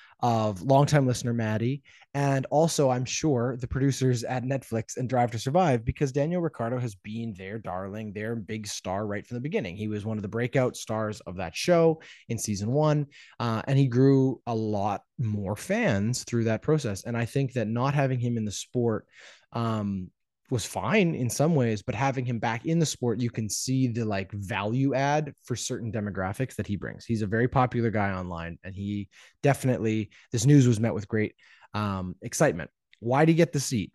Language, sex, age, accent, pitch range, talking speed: English, male, 20-39, American, 105-135 Hz, 200 wpm